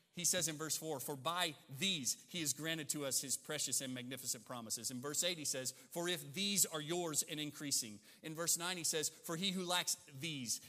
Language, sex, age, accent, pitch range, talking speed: English, male, 30-49, American, 130-165 Hz, 225 wpm